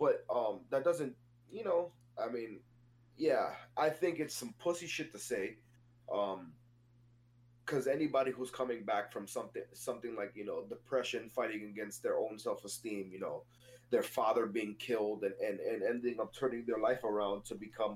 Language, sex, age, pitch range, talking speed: English, male, 20-39, 120-130 Hz, 175 wpm